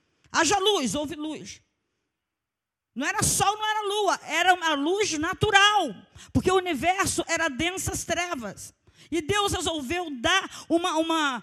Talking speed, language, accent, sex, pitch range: 135 wpm, Portuguese, Brazilian, female, 235-370 Hz